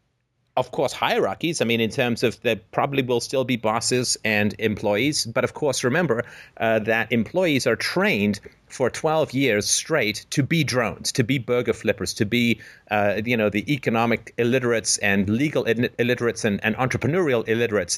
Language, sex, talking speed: English, male, 170 wpm